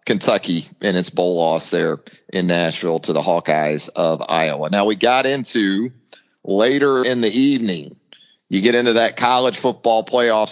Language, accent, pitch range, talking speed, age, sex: English, American, 100-125 Hz, 160 wpm, 40-59, male